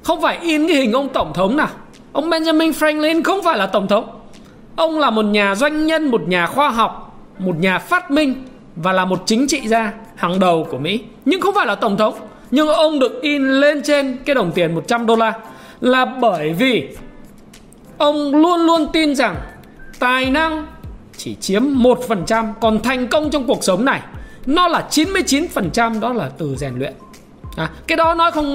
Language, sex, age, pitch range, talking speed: Vietnamese, male, 20-39, 215-300 Hz, 200 wpm